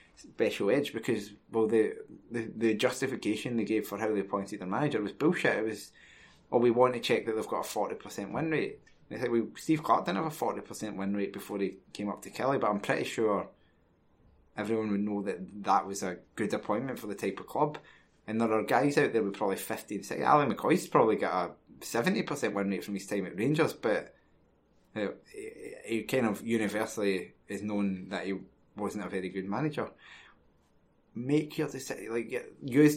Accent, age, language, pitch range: British, 20-39, English, 100-125 Hz